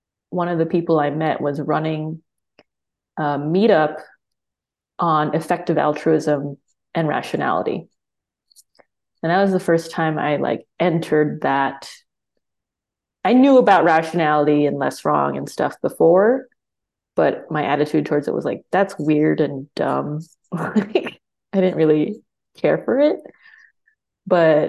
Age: 20-39